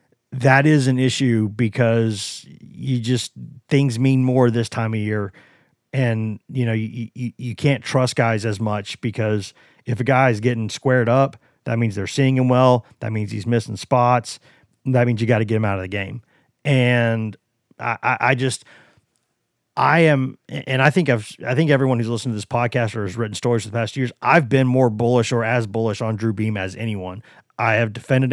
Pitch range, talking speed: 110-130 Hz, 205 wpm